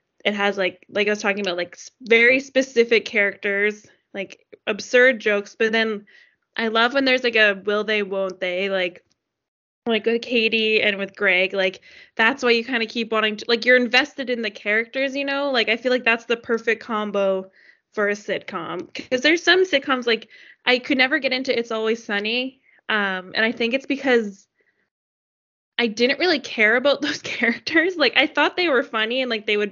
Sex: female